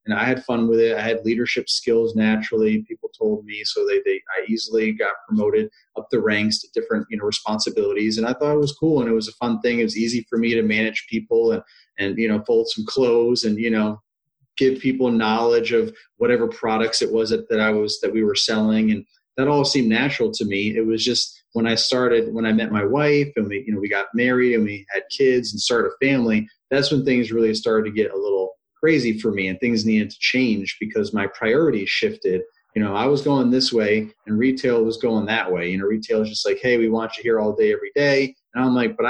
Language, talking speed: English, 245 wpm